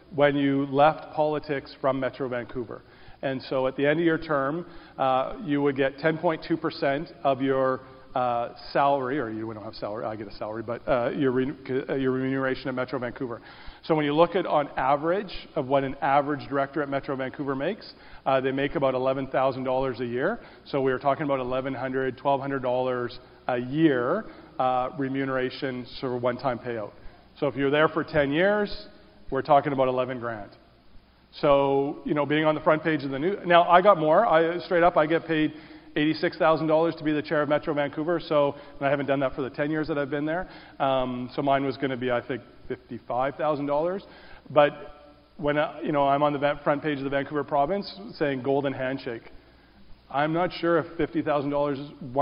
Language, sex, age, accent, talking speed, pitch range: English, male, 40-59, American, 190 wpm, 130-155 Hz